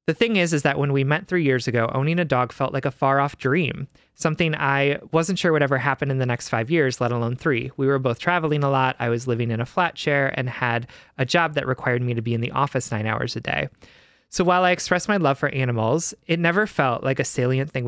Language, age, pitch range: English, 20-39, 125-165 Hz